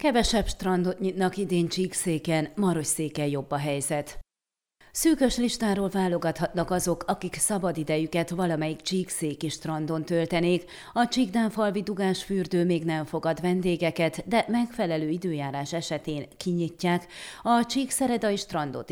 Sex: female